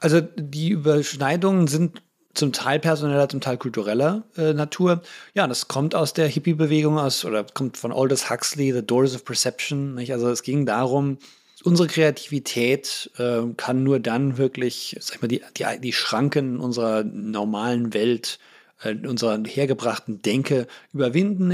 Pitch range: 120-145 Hz